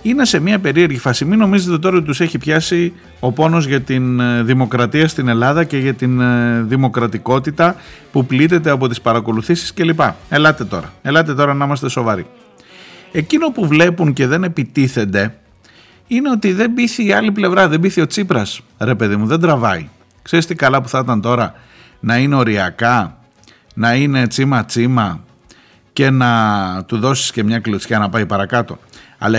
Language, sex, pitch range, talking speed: Greek, male, 110-155 Hz, 165 wpm